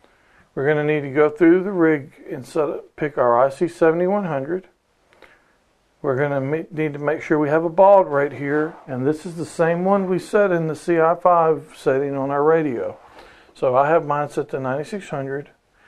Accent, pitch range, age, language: American, 140-180 Hz, 50-69, English